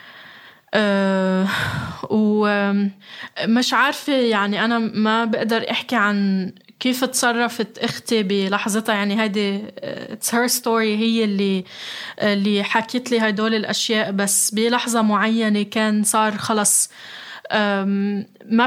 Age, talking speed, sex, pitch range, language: 20-39, 105 wpm, female, 200-230 Hz, Arabic